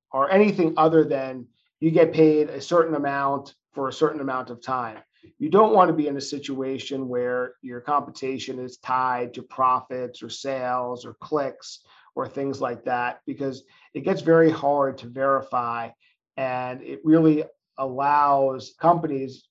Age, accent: 40-59, American